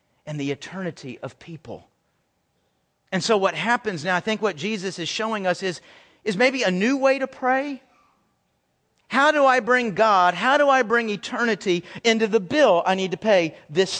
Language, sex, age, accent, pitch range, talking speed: English, male, 50-69, American, 175-250 Hz, 185 wpm